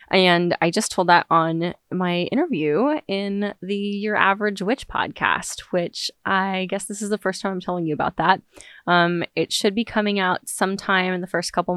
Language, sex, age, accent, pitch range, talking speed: English, female, 20-39, American, 175-215 Hz, 195 wpm